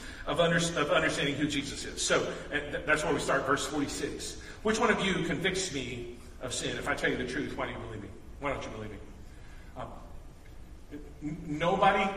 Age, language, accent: 40-59, English, American